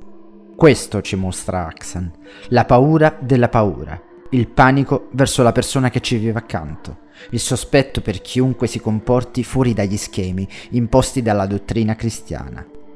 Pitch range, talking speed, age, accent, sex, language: 100-130 Hz, 140 wpm, 30-49, native, male, Italian